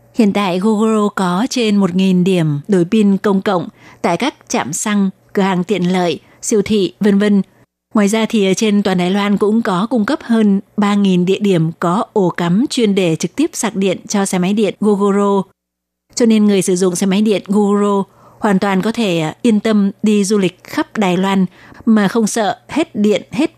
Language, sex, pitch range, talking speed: Vietnamese, female, 185-215 Hz, 200 wpm